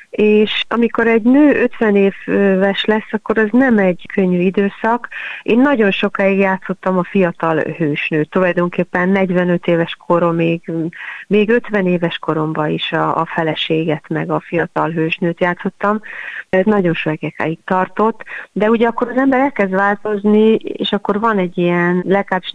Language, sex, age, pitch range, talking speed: Hungarian, female, 30-49, 170-210 Hz, 145 wpm